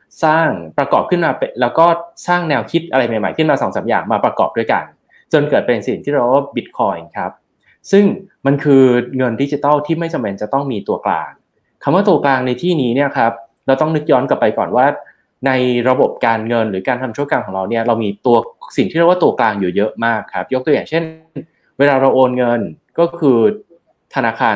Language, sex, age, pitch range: Thai, male, 20-39, 115-155 Hz